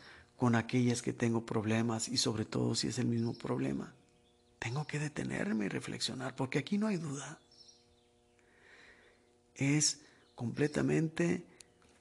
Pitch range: 120-125 Hz